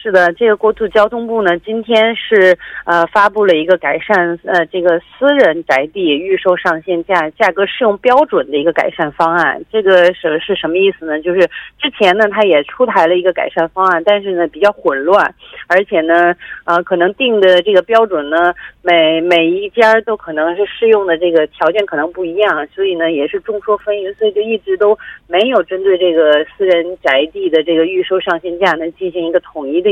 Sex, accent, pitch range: female, Chinese, 170-220 Hz